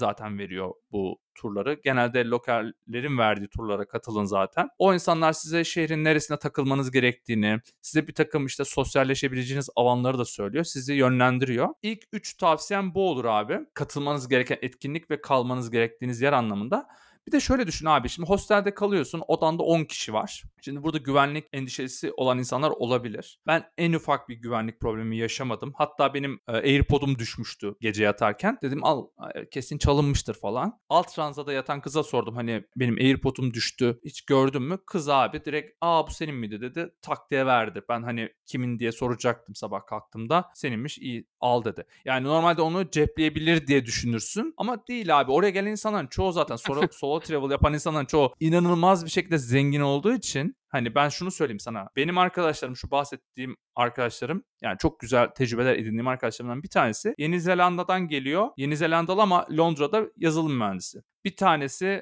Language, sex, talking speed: Turkish, male, 160 wpm